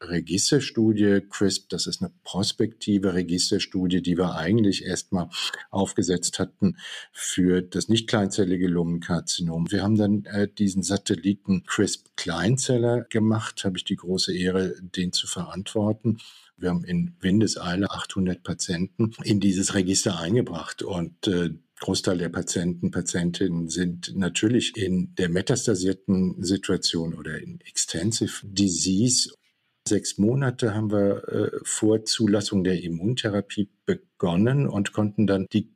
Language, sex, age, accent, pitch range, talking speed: German, male, 50-69, German, 90-105 Hz, 125 wpm